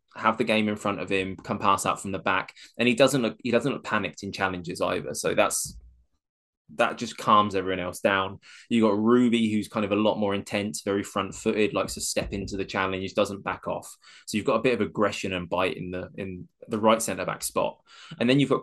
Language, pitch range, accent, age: English, 95-110 Hz, British, 20-39